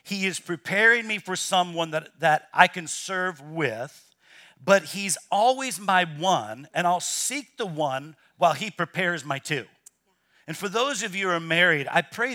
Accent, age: American, 50-69